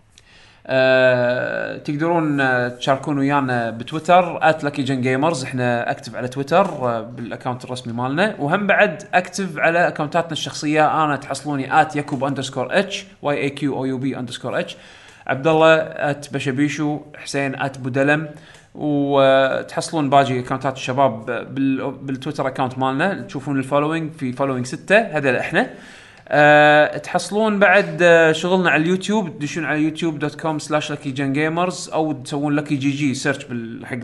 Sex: male